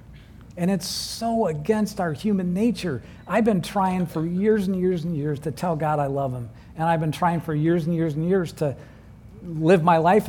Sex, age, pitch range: male, 50-69, 125-190 Hz